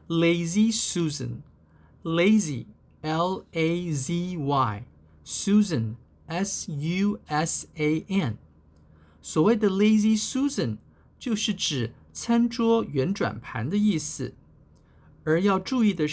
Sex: male